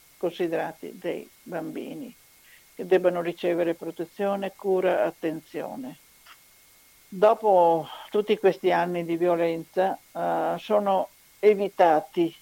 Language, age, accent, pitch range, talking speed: Italian, 60-79, native, 165-190 Hz, 85 wpm